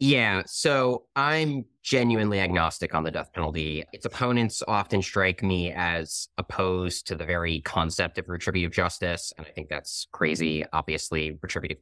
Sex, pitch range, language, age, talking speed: male, 85-120 Hz, English, 30-49, 150 wpm